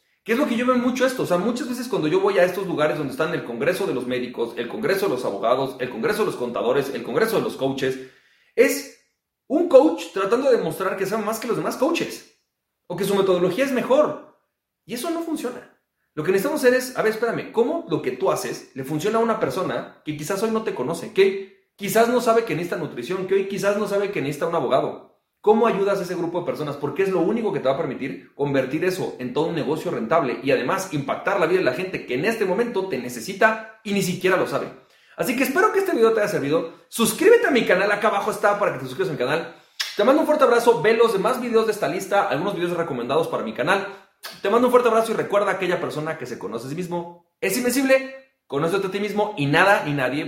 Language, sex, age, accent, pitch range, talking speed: Spanish, male, 30-49, Mexican, 175-250 Hz, 255 wpm